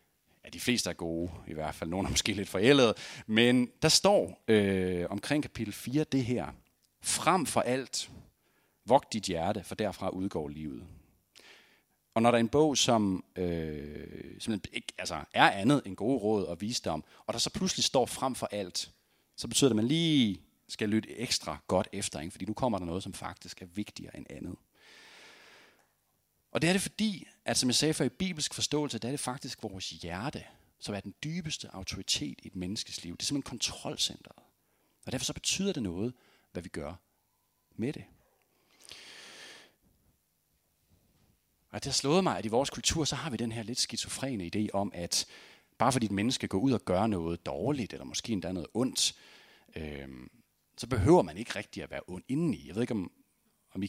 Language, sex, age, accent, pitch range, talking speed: Danish, male, 40-59, native, 90-125 Hz, 195 wpm